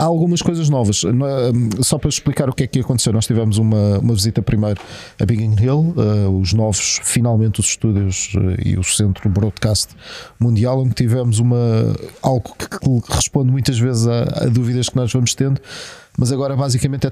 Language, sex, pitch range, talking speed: Portuguese, male, 105-125 Hz, 205 wpm